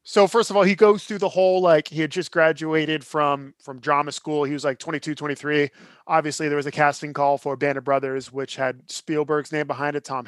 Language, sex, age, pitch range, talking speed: English, male, 20-39, 140-170 Hz, 235 wpm